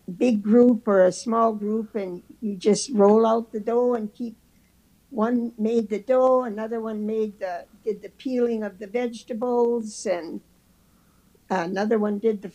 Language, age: English, 60-79